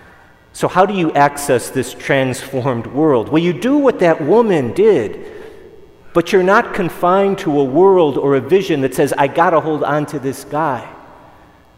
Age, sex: 40-59, male